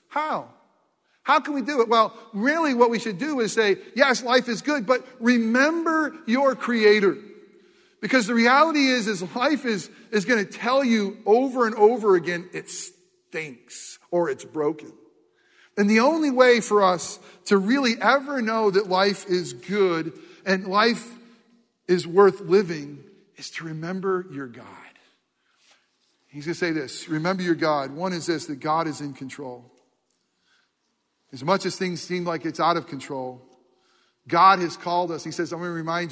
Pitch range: 175-250 Hz